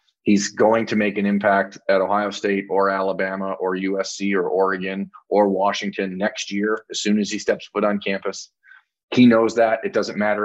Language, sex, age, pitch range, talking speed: English, male, 30-49, 95-105 Hz, 190 wpm